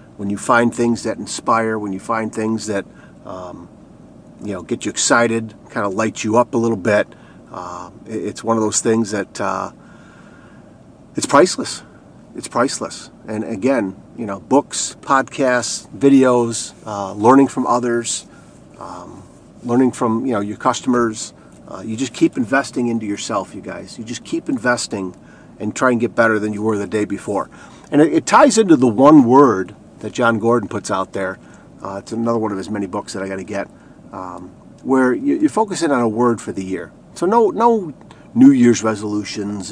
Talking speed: 185 wpm